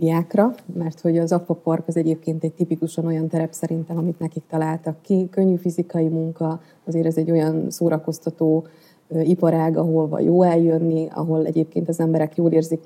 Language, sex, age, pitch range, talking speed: Hungarian, female, 20-39, 160-175 Hz, 160 wpm